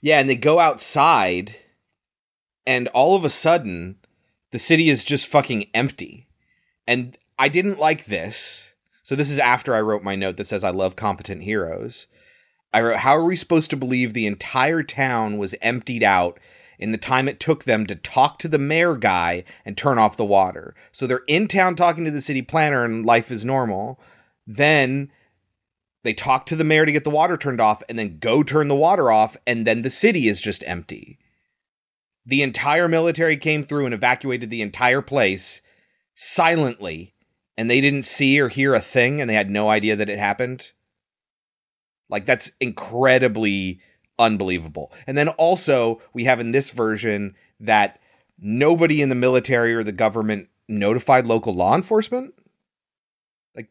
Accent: American